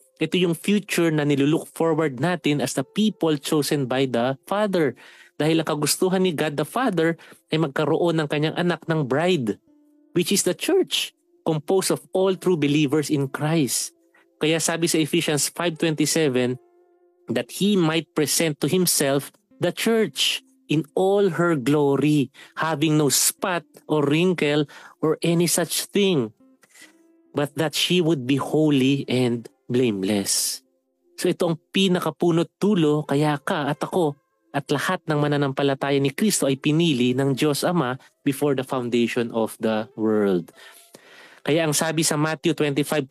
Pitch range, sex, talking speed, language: 140-175 Hz, male, 145 wpm, English